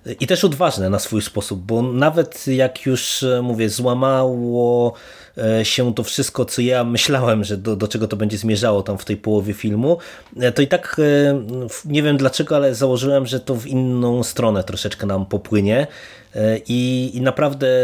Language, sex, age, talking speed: Polish, male, 20-39, 165 wpm